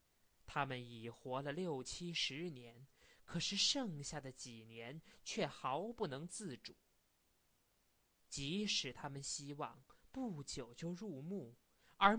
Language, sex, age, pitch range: Chinese, male, 20-39, 130-185 Hz